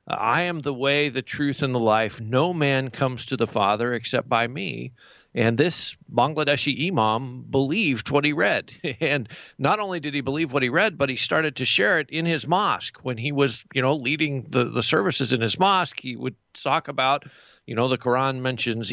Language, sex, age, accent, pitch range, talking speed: English, male, 50-69, American, 125-155 Hz, 205 wpm